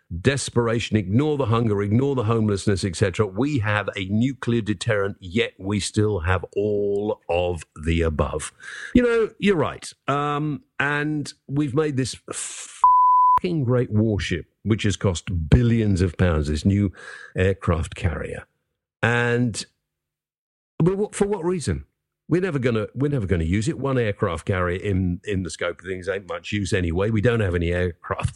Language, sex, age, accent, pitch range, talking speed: English, male, 50-69, British, 95-135 Hz, 155 wpm